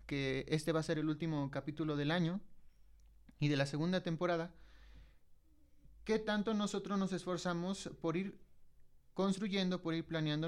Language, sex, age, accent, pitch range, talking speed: Spanish, male, 30-49, Mexican, 150-190 Hz, 150 wpm